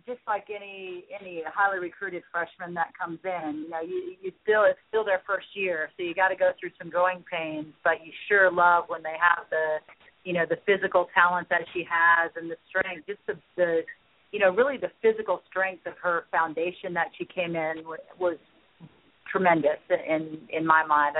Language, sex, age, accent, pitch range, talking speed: English, female, 40-59, American, 165-190 Hz, 200 wpm